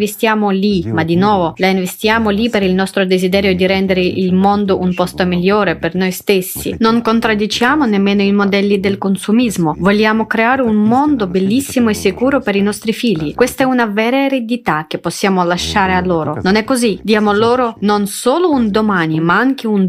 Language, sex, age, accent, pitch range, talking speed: Italian, female, 30-49, native, 190-235 Hz, 185 wpm